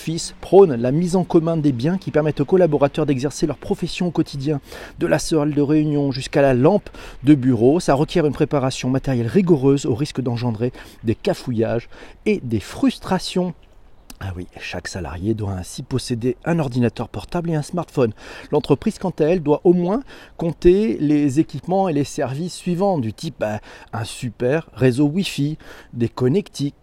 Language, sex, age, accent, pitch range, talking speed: French, male, 40-59, French, 120-160 Hz, 170 wpm